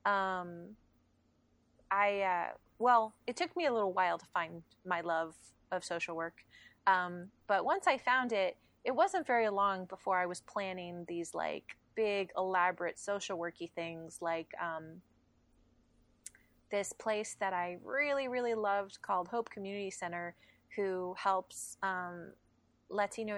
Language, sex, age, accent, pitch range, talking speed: English, female, 30-49, American, 175-200 Hz, 140 wpm